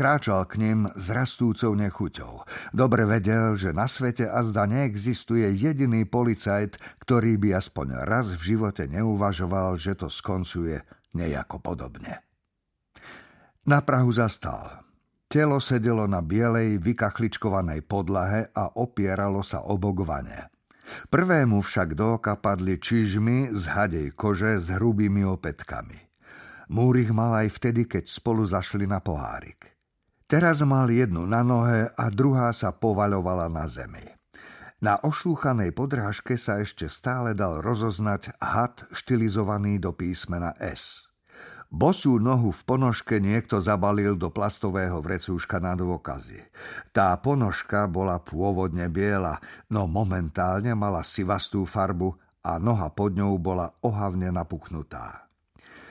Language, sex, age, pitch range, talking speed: Slovak, male, 50-69, 95-115 Hz, 120 wpm